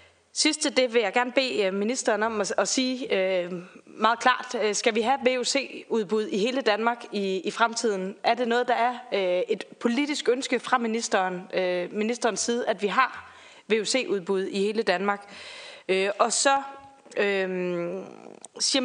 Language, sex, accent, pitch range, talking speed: Danish, female, native, 185-240 Hz, 135 wpm